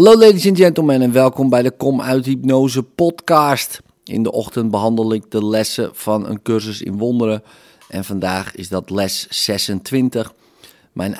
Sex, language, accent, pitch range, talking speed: male, Dutch, Dutch, 95-130 Hz, 165 wpm